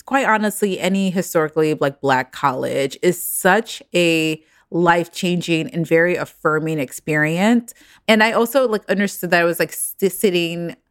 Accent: American